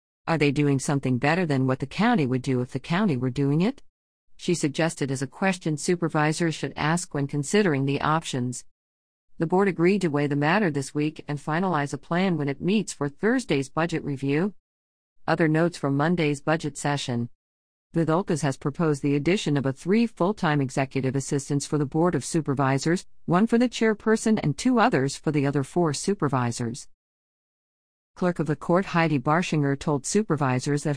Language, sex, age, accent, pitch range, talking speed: English, female, 50-69, American, 140-180 Hz, 180 wpm